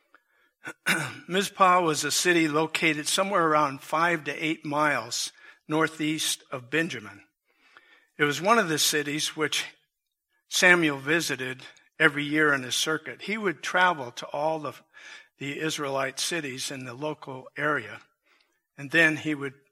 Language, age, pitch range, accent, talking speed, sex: English, 60-79, 140-180 Hz, American, 135 wpm, male